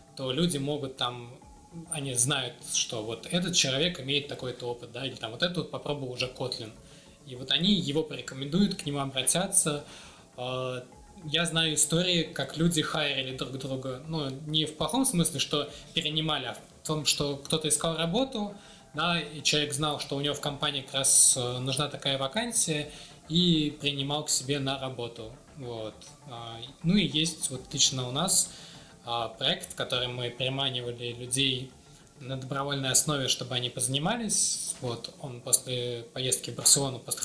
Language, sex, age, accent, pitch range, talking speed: Russian, male, 20-39, native, 130-160 Hz, 155 wpm